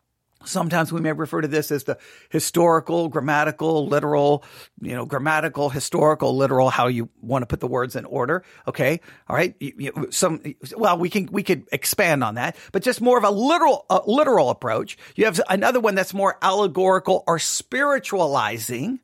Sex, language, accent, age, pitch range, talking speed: male, English, American, 40-59, 165-255 Hz, 175 wpm